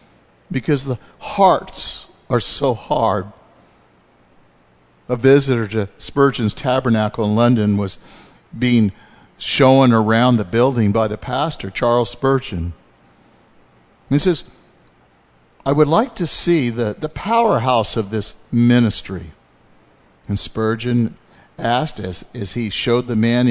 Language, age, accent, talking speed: English, 50-69, American, 115 wpm